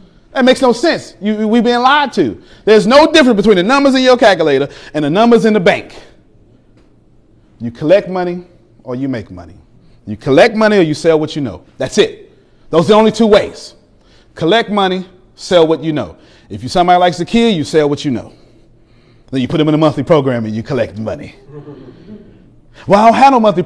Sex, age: male, 30-49